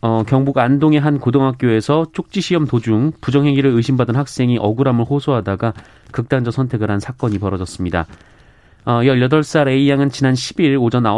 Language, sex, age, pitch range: Korean, male, 30-49, 110-140 Hz